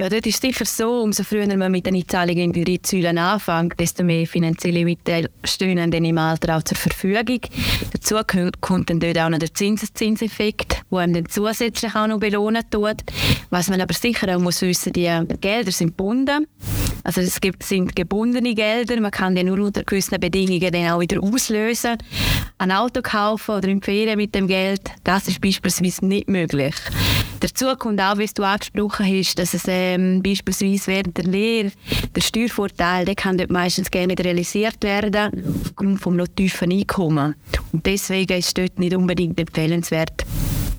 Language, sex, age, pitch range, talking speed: English, female, 20-39, 175-210 Hz, 180 wpm